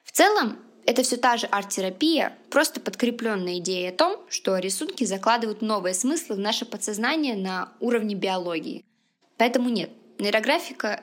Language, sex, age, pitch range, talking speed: Russian, female, 20-39, 190-255 Hz, 140 wpm